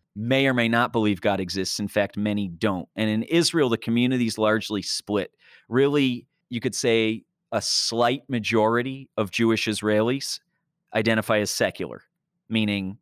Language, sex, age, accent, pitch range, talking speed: English, male, 40-59, American, 105-130 Hz, 150 wpm